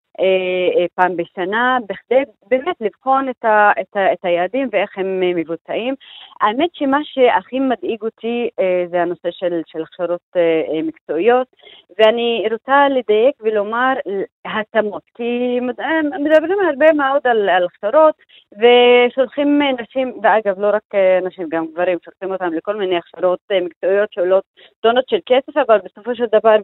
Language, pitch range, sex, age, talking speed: Hebrew, 185-245 Hz, female, 30-49, 135 wpm